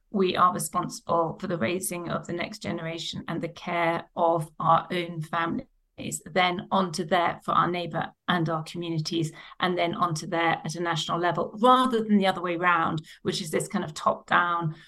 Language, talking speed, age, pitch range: English, 200 wpm, 40-59, 170-205 Hz